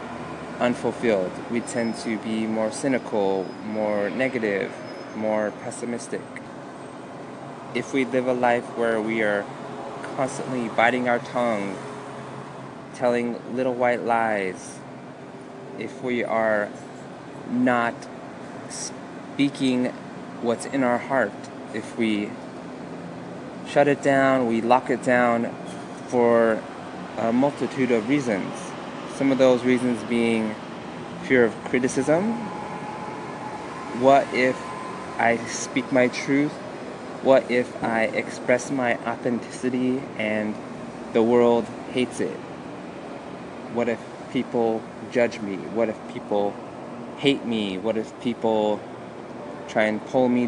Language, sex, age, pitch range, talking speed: English, male, 20-39, 110-130 Hz, 110 wpm